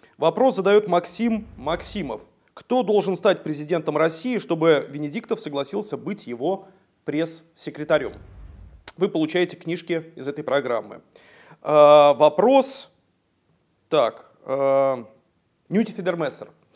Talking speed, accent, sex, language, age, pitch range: 100 wpm, native, male, Russian, 40-59, 150-205 Hz